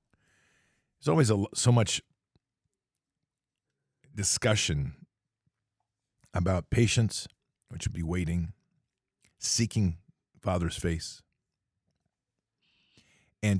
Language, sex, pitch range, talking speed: English, male, 90-115 Hz, 65 wpm